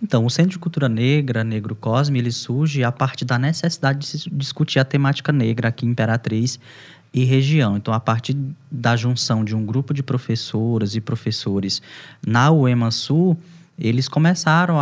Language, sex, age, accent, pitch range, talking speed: Portuguese, male, 10-29, Brazilian, 120-155 Hz, 160 wpm